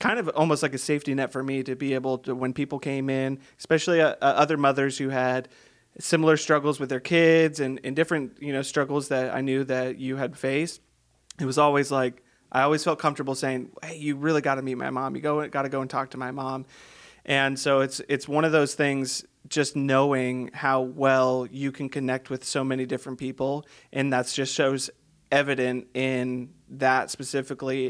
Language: English